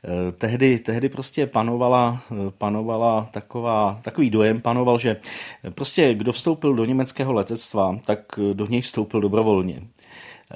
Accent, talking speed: native, 130 wpm